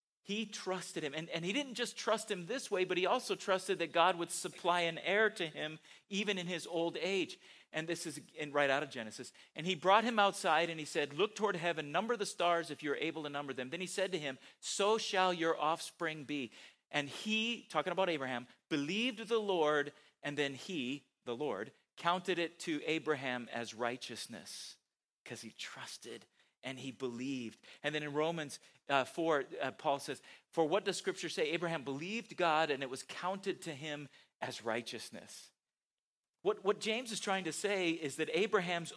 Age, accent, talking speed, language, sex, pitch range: 40-59, American, 195 wpm, English, male, 145-190 Hz